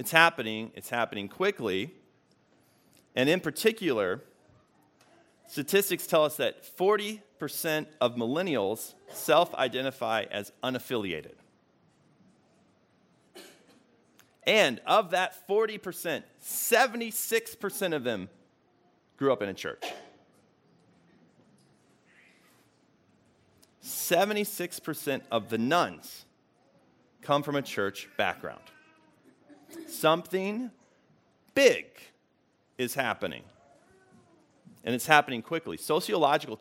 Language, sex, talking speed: English, male, 80 wpm